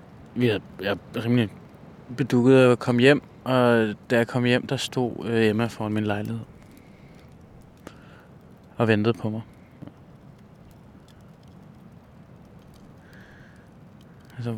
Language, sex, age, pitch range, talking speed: Danish, male, 20-39, 110-130 Hz, 105 wpm